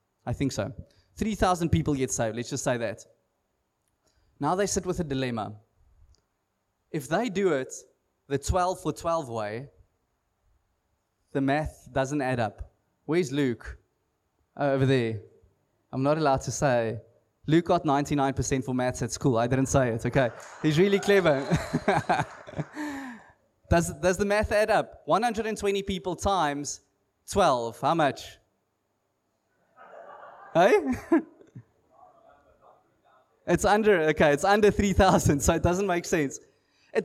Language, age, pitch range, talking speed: English, 20-39, 130-210 Hz, 130 wpm